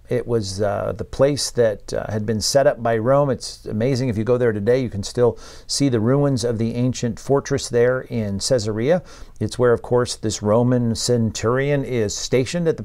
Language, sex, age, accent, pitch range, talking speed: English, male, 50-69, American, 115-135 Hz, 205 wpm